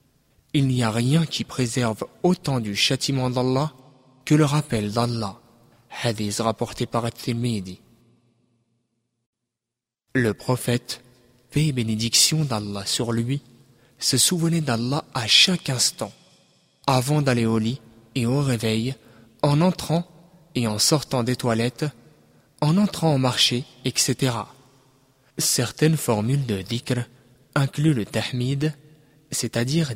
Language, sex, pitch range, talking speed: French, male, 115-140 Hz, 120 wpm